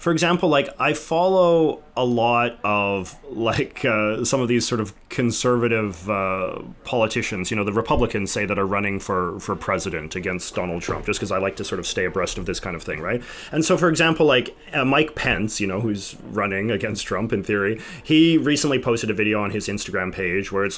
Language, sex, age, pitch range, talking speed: English, male, 30-49, 110-160 Hz, 215 wpm